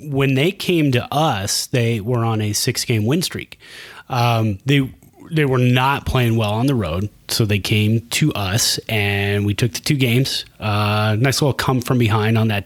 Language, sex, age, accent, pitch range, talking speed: English, male, 30-49, American, 100-125 Hz, 200 wpm